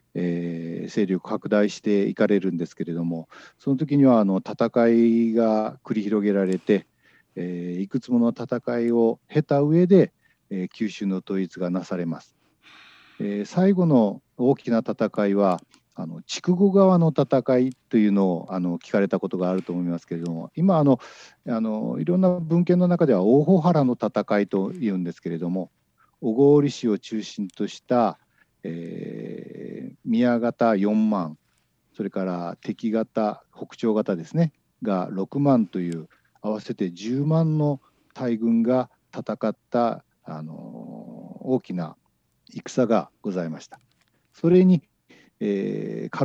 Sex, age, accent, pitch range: male, 50-69, native, 95-140 Hz